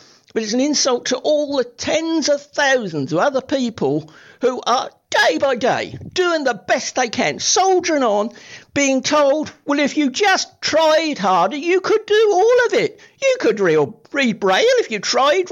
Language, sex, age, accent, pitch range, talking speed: English, male, 50-69, British, 245-360 Hz, 180 wpm